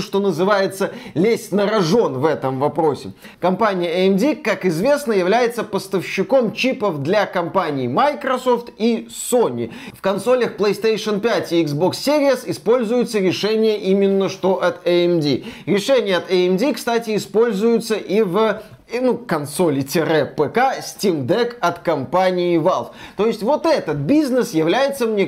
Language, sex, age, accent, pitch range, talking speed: Russian, male, 20-39, native, 175-230 Hz, 125 wpm